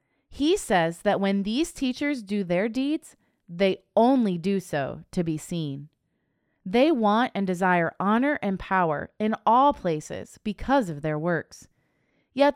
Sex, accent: female, American